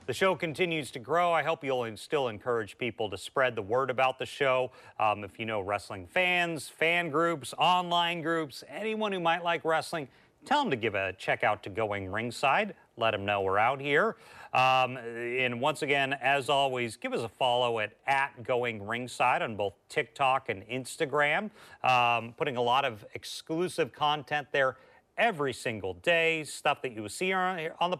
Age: 40-59